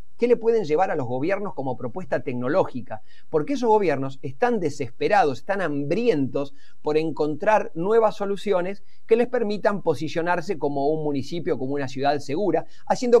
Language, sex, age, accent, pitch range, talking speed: Spanish, male, 40-59, Argentinian, 130-180 Hz, 150 wpm